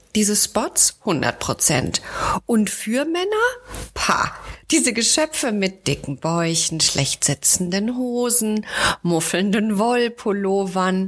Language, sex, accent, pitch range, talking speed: German, female, German, 180-255 Hz, 95 wpm